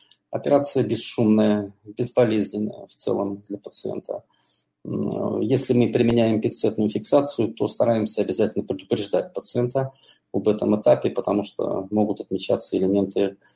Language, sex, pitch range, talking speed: Russian, male, 100-120 Hz, 110 wpm